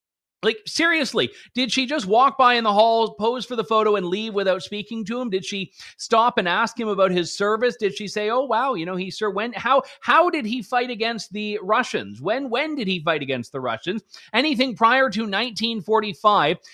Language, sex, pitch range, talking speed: English, male, 190-240 Hz, 210 wpm